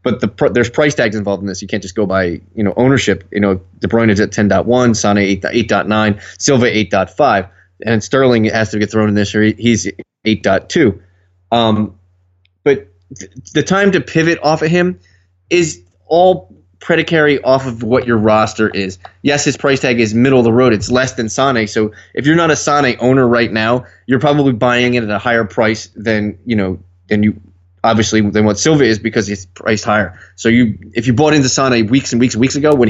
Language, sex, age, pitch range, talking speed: English, male, 20-39, 100-125 Hz, 215 wpm